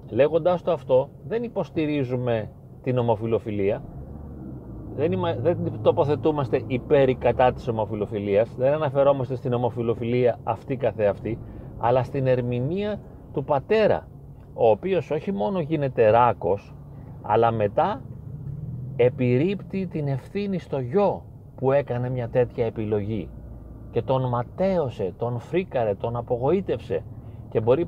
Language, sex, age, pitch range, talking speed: Greek, male, 30-49, 115-155 Hz, 110 wpm